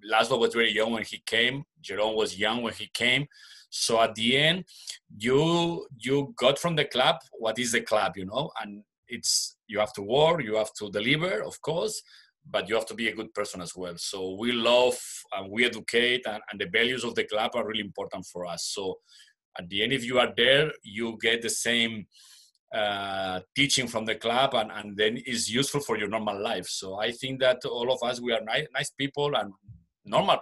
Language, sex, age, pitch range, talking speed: English, male, 30-49, 105-130 Hz, 215 wpm